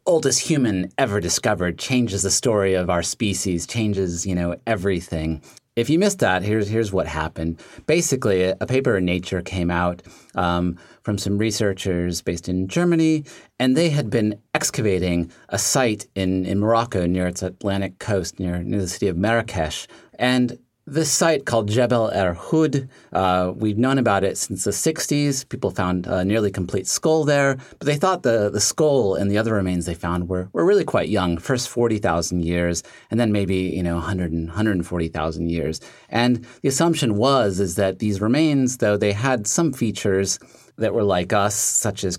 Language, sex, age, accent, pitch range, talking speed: English, male, 30-49, American, 90-120 Hz, 175 wpm